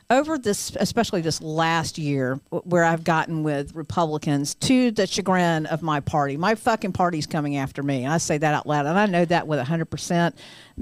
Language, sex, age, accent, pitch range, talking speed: English, female, 50-69, American, 150-190 Hz, 190 wpm